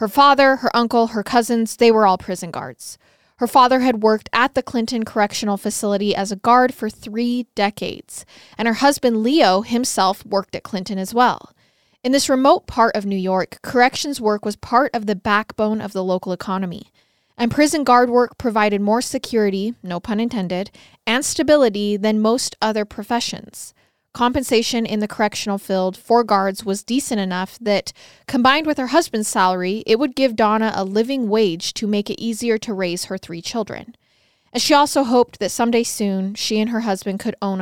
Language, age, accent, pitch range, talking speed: English, 20-39, American, 200-245 Hz, 185 wpm